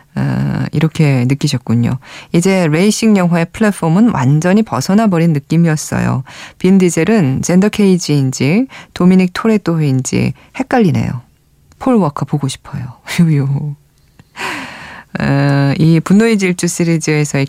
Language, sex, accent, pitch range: Korean, female, native, 135-190 Hz